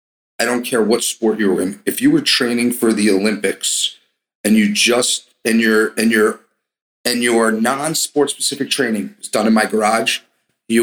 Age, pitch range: 40-59, 105-130 Hz